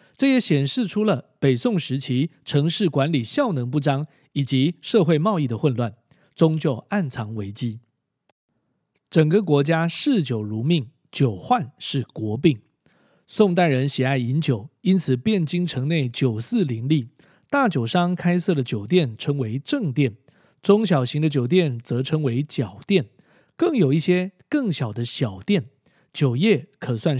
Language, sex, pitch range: Chinese, male, 135-180 Hz